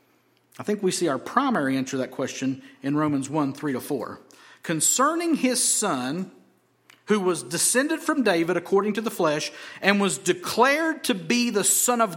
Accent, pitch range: American, 145-210 Hz